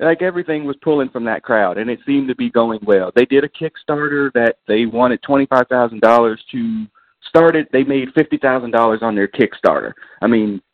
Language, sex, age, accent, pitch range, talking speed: English, male, 40-59, American, 110-145 Hz, 205 wpm